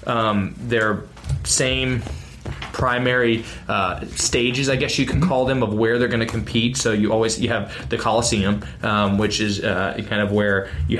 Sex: male